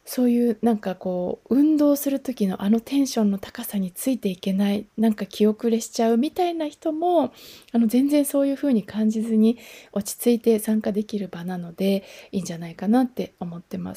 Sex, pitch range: female, 205-295 Hz